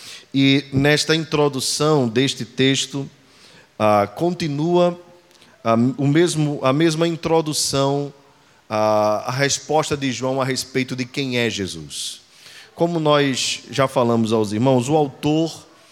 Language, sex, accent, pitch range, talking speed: Portuguese, male, Brazilian, 125-160 Hz, 120 wpm